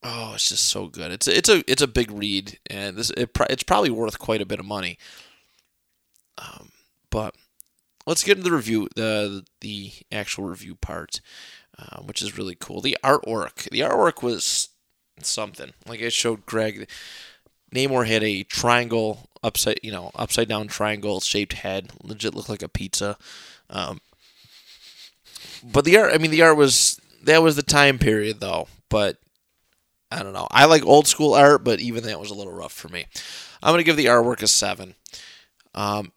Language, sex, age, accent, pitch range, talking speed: English, male, 20-39, American, 105-130 Hz, 180 wpm